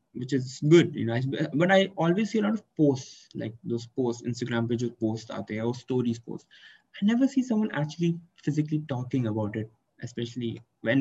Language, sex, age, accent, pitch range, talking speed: English, male, 20-39, Indian, 115-165 Hz, 190 wpm